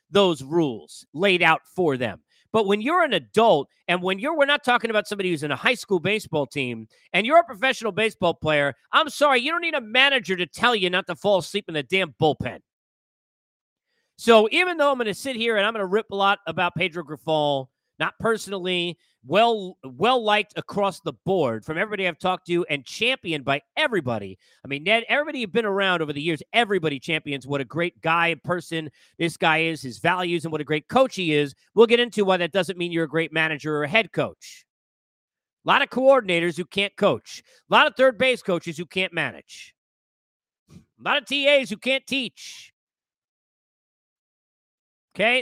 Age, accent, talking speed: 40-59, American, 200 wpm